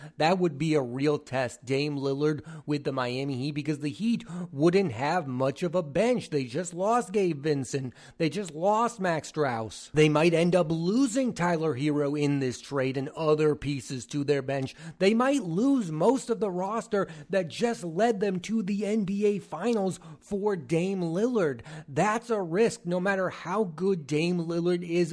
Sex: male